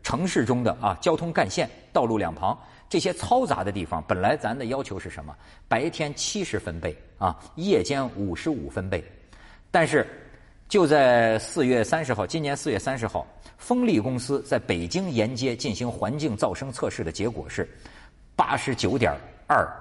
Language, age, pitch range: Chinese, 50-69, 85-135 Hz